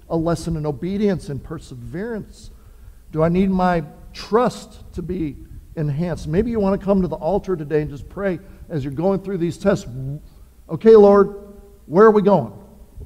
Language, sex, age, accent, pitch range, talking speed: English, male, 50-69, American, 135-195 Hz, 175 wpm